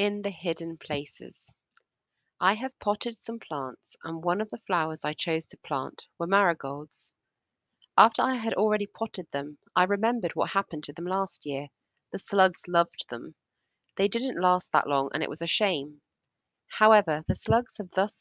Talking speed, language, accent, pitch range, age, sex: 175 wpm, English, British, 155-210 Hz, 30-49, female